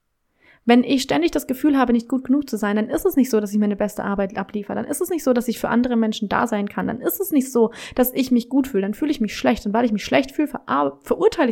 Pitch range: 215-265 Hz